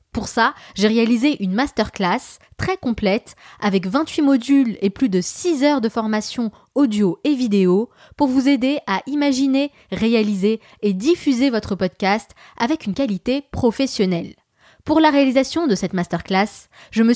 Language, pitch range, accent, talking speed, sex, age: French, 200-275 Hz, French, 150 wpm, female, 20-39